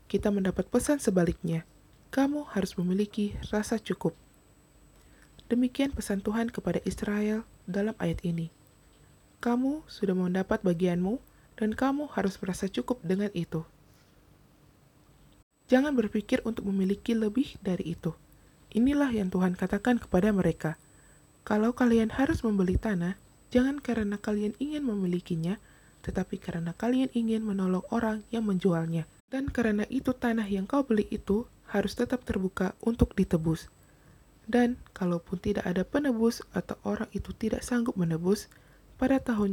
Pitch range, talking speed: 185-240 Hz, 130 wpm